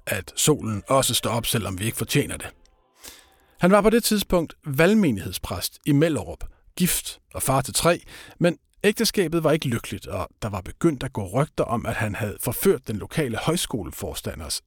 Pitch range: 105-170 Hz